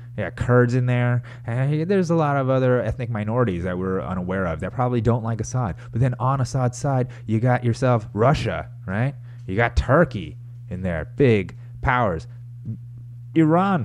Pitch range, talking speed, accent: 115-135 Hz, 175 wpm, American